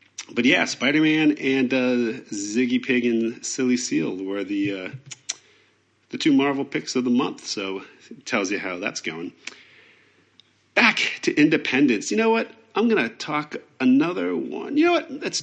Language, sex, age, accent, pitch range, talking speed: English, male, 40-59, American, 115-150 Hz, 165 wpm